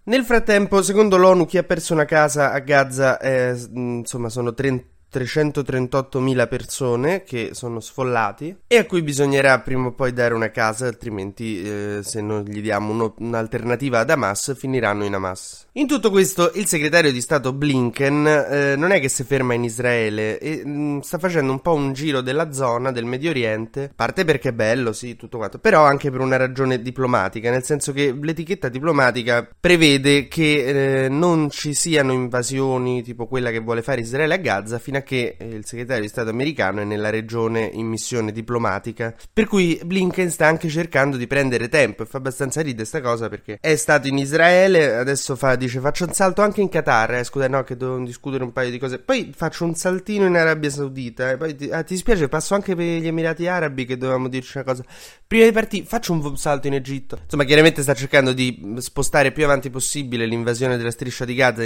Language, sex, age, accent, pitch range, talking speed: Italian, male, 20-39, native, 120-155 Hz, 200 wpm